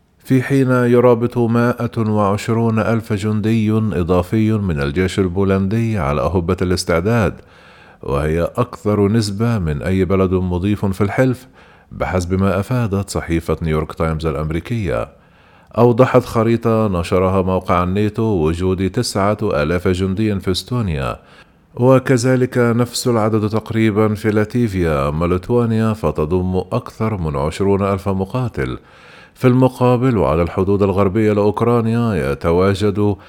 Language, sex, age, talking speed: Arabic, male, 40-59, 110 wpm